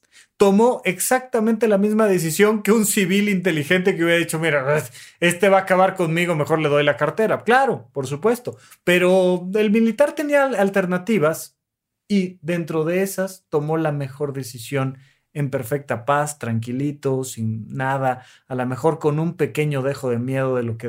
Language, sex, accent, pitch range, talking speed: Spanish, male, Mexican, 125-185 Hz, 165 wpm